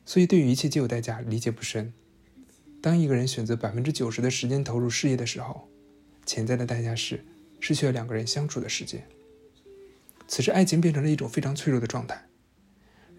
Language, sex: Chinese, male